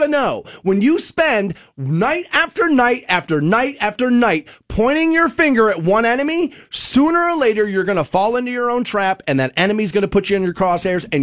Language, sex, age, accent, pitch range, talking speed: English, male, 30-49, American, 180-250 Hz, 210 wpm